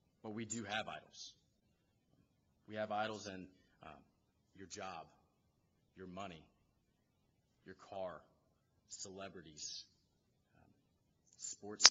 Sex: male